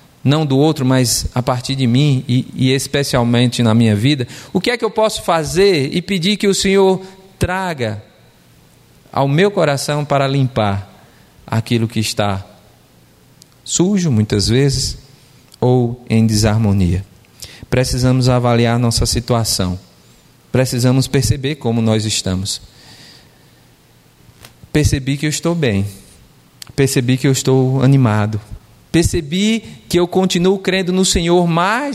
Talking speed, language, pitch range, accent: 130 wpm, Portuguese, 110-160 Hz, Brazilian